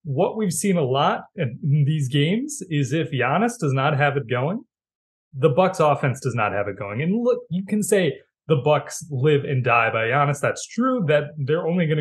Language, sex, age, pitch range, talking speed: English, male, 20-39, 125-175 Hz, 210 wpm